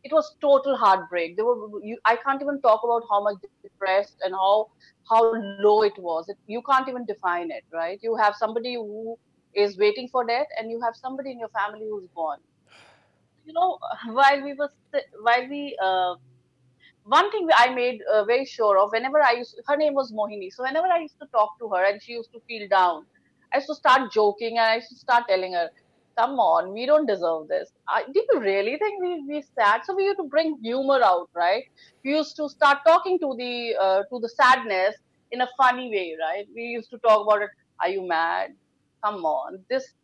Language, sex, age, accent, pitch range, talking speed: English, female, 30-49, Indian, 200-275 Hz, 215 wpm